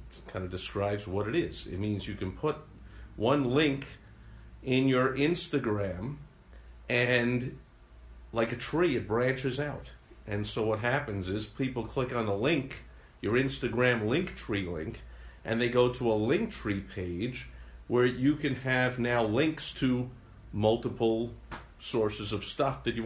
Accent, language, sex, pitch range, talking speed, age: American, English, male, 95-125 Hz, 155 wpm, 50-69